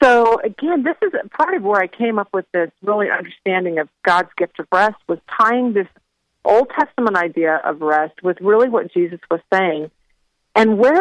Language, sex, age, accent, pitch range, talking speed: English, female, 40-59, American, 175-230 Hz, 190 wpm